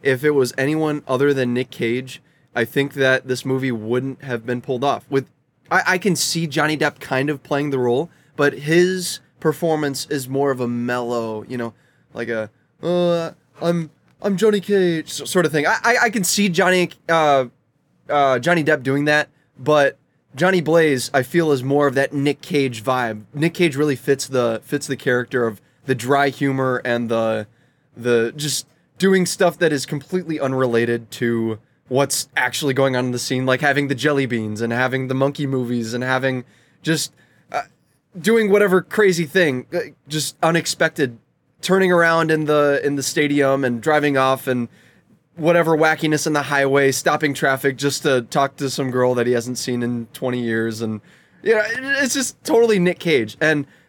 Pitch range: 130-165 Hz